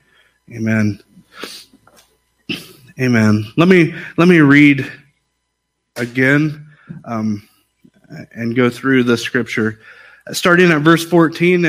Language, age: English, 30-49